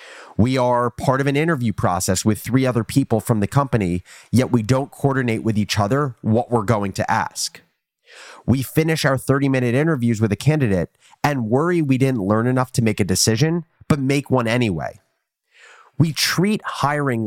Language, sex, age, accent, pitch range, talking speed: English, male, 30-49, American, 105-140 Hz, 175 wpm